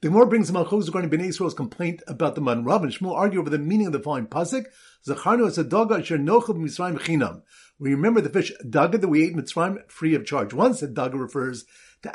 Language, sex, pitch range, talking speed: English, male, 150-215 Hz, 230 wpm